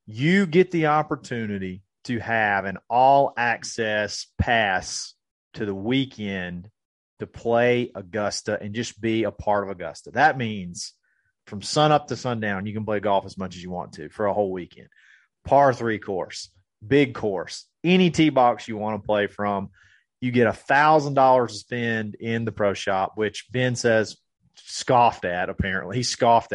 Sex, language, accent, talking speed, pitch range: male, English, American, 165 wpm, 105-135 Hz